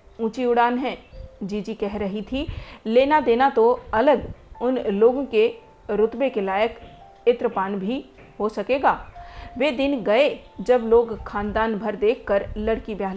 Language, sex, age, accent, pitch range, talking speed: Hindi, female, 40-59, native, 200-245 Hz, 145 wpm